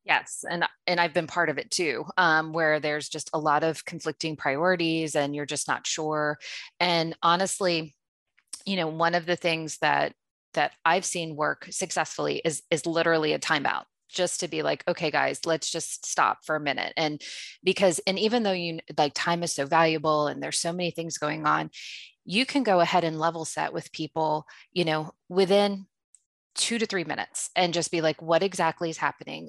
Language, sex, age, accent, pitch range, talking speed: English, female, 20-39, American, 155-180 Hz, 195 wpm